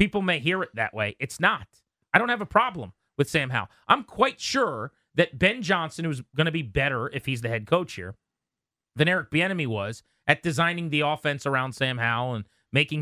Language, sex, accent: English, male, American